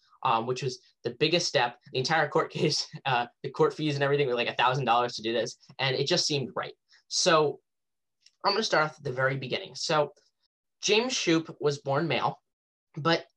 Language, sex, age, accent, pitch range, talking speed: English, male, 10-29, American, 135-170 Hz, 195 wpm